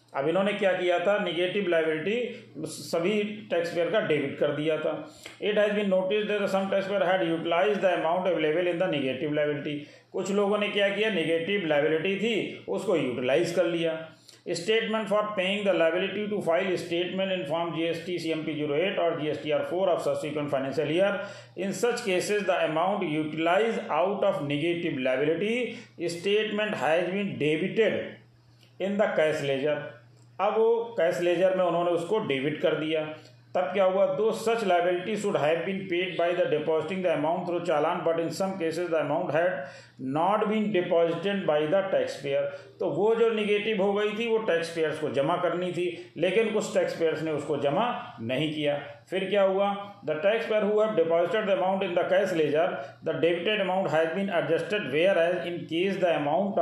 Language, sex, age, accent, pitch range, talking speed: Hindi, male, 40-59, native, 155-195 Hz, 190 wpm